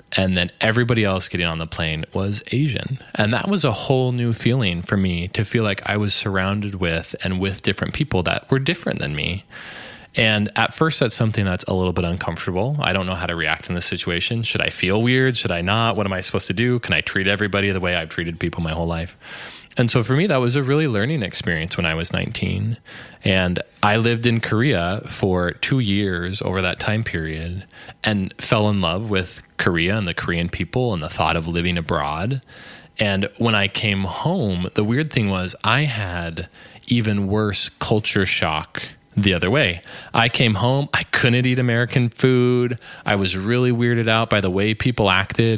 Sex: male